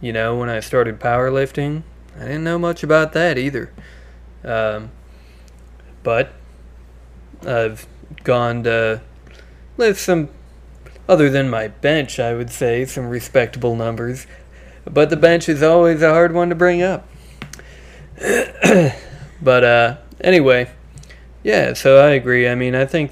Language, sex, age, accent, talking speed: English, male, 20-39, American, 135 wpm